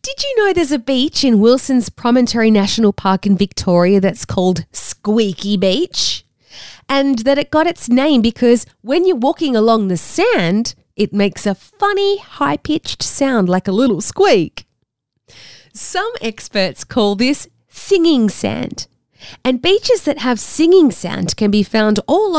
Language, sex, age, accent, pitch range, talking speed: English, female, 30-49, Australian, 205-310 Hz, 150 wpm